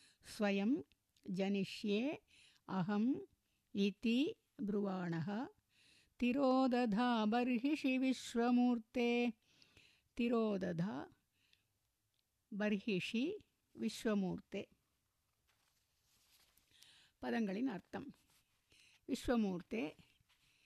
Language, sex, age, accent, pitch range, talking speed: Tamil, female, 50-69, native, 190-245 Hz, 30 wpm